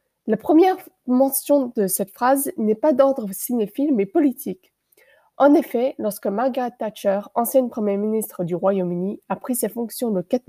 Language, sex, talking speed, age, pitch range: French, female, 160 wpm, 20-39, 205-270 Hz